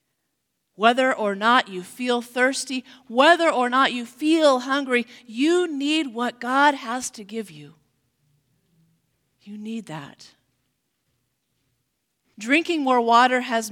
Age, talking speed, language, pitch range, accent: 40-59, 120 wpm, English, 195-260 Hz, American